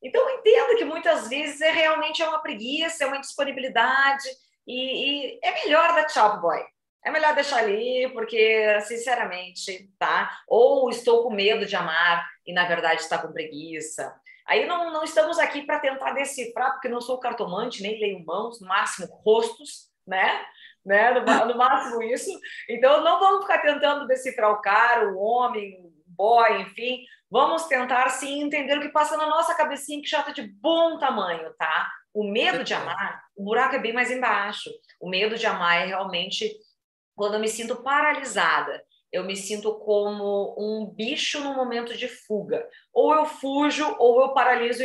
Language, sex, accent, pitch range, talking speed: Portuguese, female, Brazilian, 210-300 Hz, 170 wpm